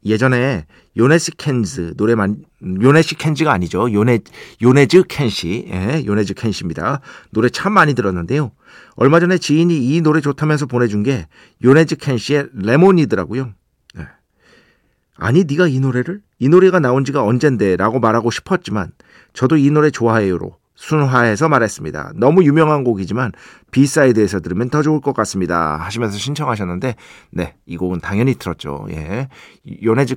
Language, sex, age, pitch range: Korean, male, 40-59, 100-145 Hz